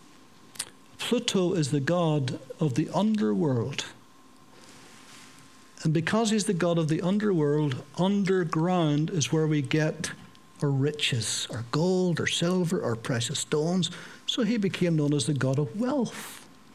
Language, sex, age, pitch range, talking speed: English, male, 60-79, 150-210 Hz, 135 wpm